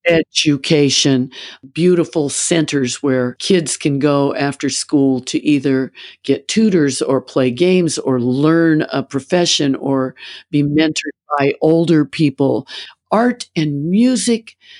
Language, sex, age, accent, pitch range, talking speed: English, female, 50-69, American, 130-165 Hz, 120 wpm